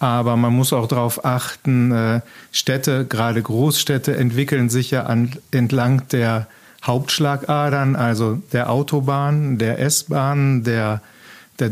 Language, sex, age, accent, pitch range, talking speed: German, male, 40-59, German, 120-140 Hz, 115 wpm